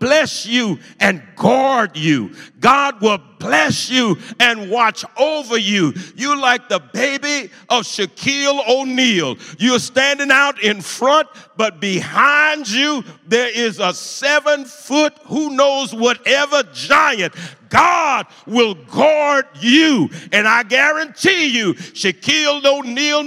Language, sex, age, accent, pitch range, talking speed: English, male, 50-69, American, 185-265 Hz, 120 wpm